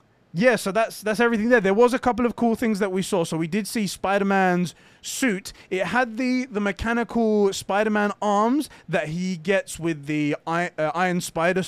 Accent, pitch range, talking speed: British, 140-185 Hz, 195 wpm